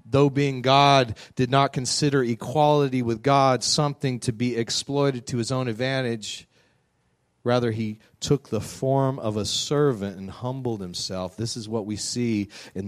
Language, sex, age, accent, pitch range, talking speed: English, male, 40-59, American, 115-145 Hz, 160 wpm